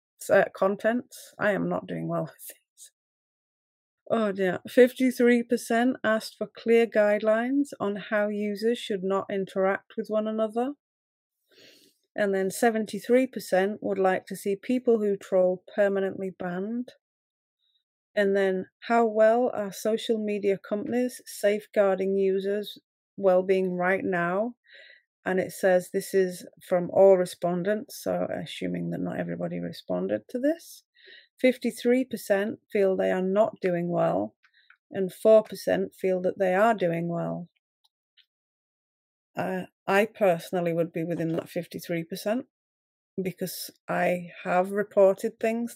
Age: 30-49